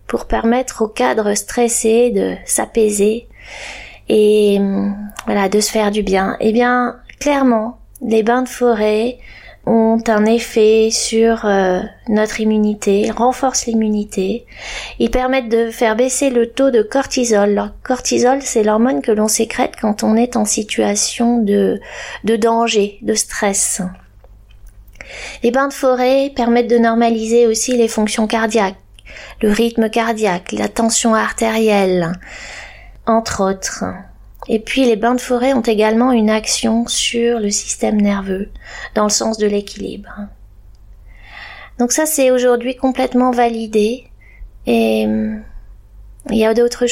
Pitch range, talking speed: 205-240 Hz, 135 wpm